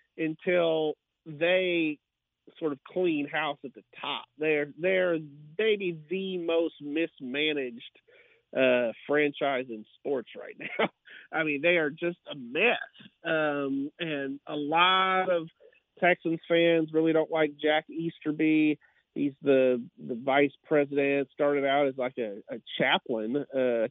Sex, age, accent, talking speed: male, 40-59, American, 130 wpm